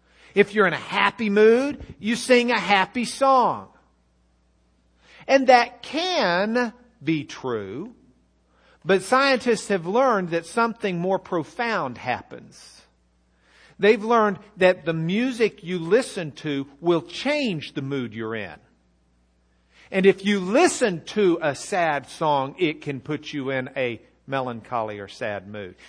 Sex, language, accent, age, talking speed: male, English, American, 50-69, 130 wpm